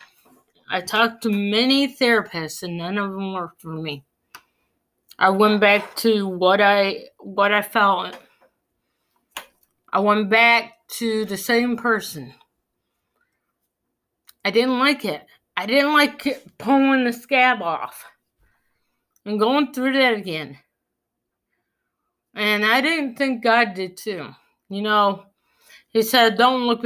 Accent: American